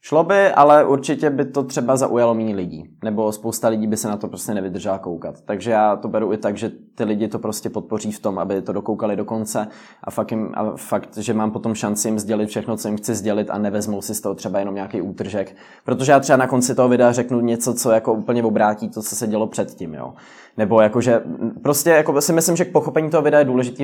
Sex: male